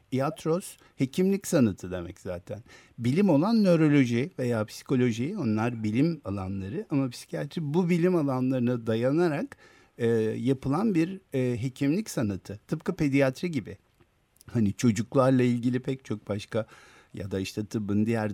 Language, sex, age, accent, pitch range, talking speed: Turkish, male, 50-69, native, 110-150 Hz, 130 wpm